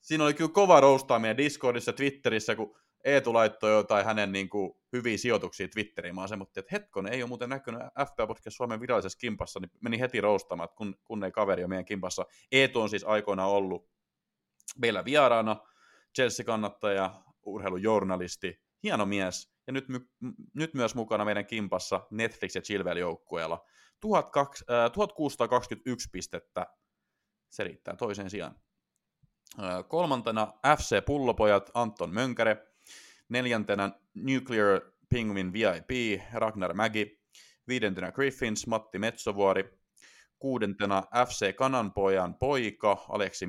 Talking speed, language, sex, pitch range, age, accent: 120 wpm, Finnish, male, 100-125 Hz, 30-49, native